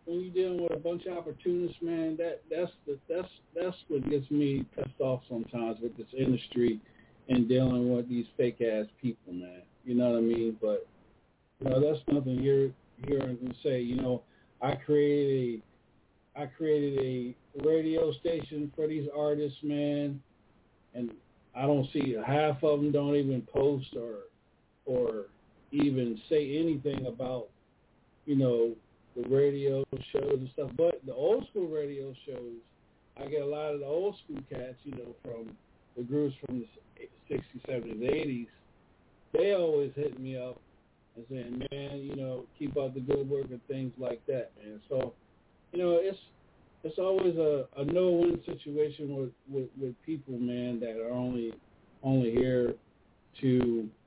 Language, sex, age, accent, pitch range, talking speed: English, male, 50-69, American, 125-150 Hz, 165 wpm